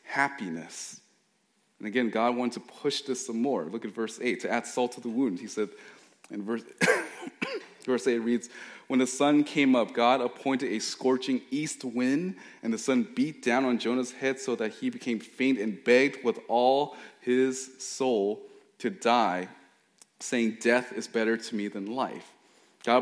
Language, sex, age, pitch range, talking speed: English, male, 30-49, 120-150 Hz, 175 wpm